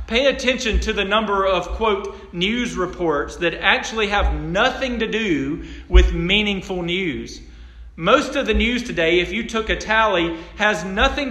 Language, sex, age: English, male, 40-59